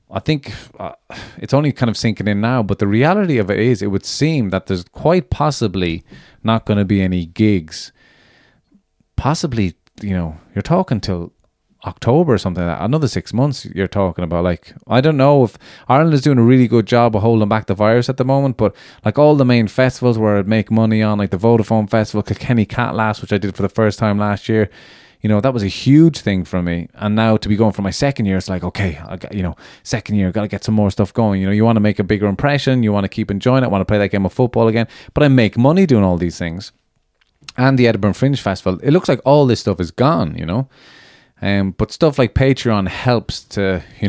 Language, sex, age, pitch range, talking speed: English, male, 30-49, 95-125 Hz, 245 wpm